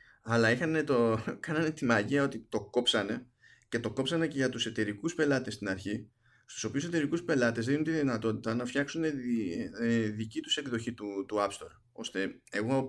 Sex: male